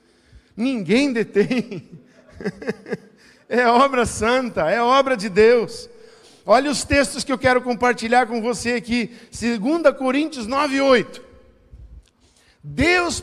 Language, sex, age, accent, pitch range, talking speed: Portuguese, male, 50-69, Brazilian, 205-280 Hz, 110 wpm